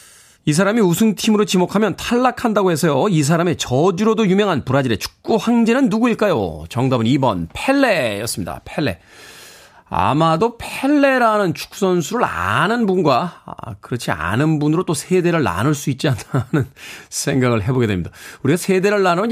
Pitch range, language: 125-195 Hz, Korean